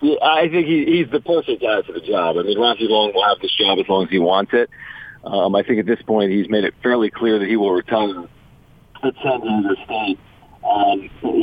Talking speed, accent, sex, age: 225 wpm, American, male, 40-59